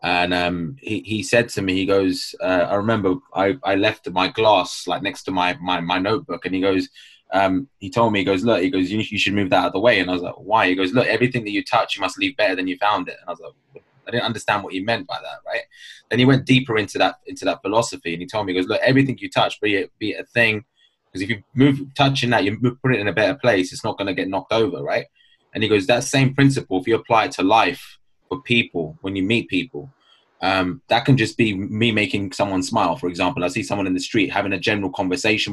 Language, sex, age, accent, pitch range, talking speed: English, male, 20-39, British, 95-120 Hz, 275 wpm